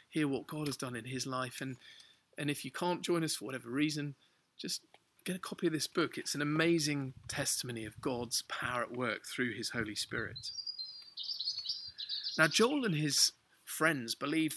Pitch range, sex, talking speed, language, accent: 135-175 Hz, male, 180 wpm, English, British